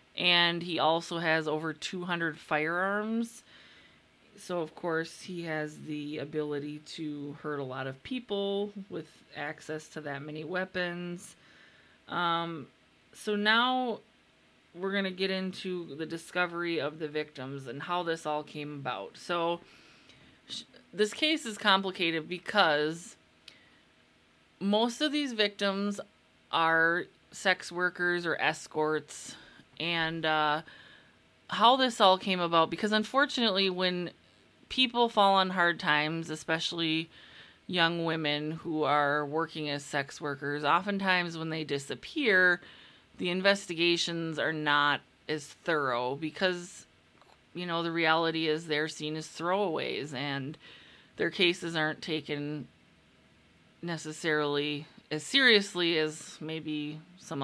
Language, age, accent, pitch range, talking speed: English, 20-39, American, 150-185 Hz, 120 wpm